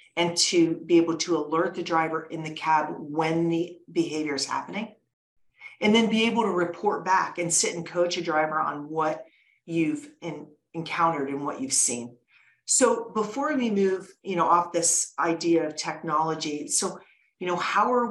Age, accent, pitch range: 40-59, American, 160-190 Hz